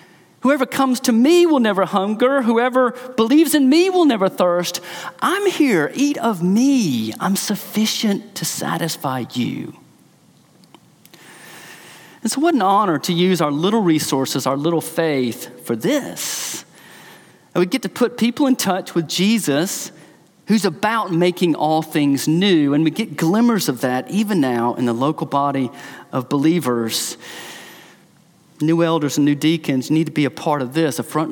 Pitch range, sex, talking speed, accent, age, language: 150-215 Hz, male, 160 wpm, American, 40-59, English